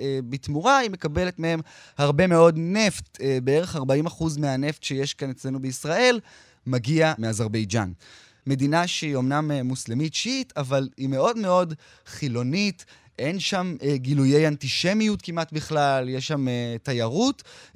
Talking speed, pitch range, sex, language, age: 120 wpm, 130-165 Hz, male, Hebrew, 20-39